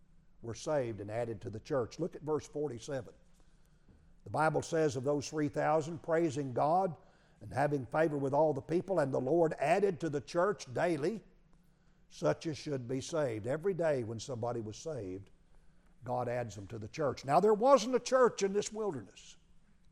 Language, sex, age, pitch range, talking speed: English, male, 60-79, 125-170 Hz, 180 wpm